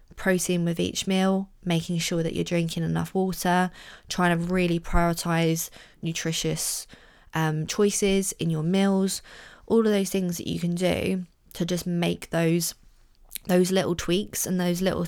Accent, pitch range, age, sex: British, 165-180 Hz, 20-39, female